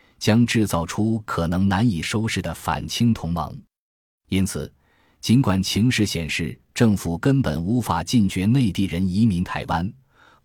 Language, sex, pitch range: Chinese, male, 85-115 Hz